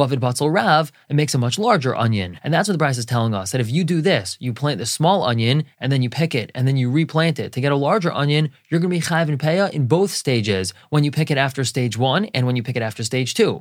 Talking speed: 285 wpm